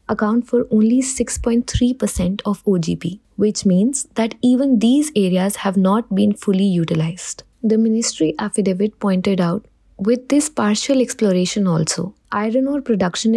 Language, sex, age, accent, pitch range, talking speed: English, female, 20-39, Indian, 190-230 Hz, 135 wpm